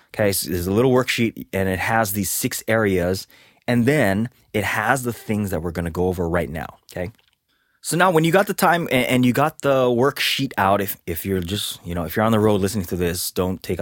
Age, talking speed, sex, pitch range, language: 20-39, 245 wpm, male, 90-115 Hz, English